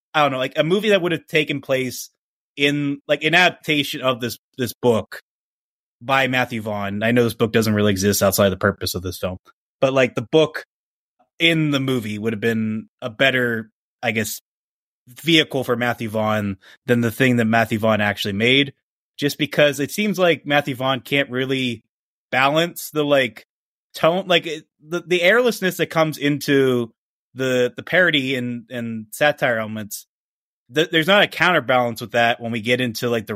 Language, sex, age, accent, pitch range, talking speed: English, male, 20-39, American, 115-150 Hz, 185 wpm